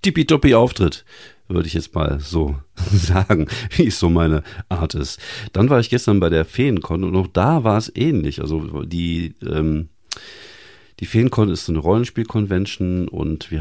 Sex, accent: male, German